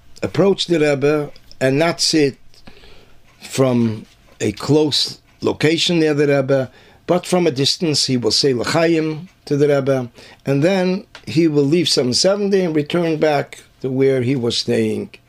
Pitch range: 120-160 Hz